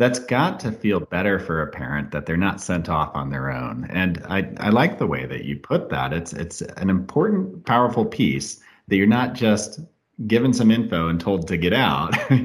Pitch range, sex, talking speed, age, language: 85-120 Hz, male, 210 wpm, 40-59, English